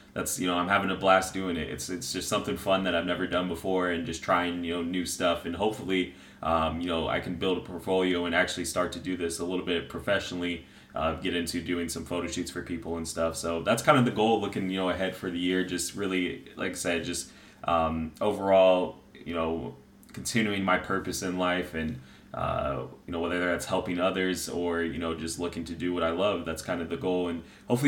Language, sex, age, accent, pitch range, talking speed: English, male, 20-39, American, 85-100 Hz, 235 wpm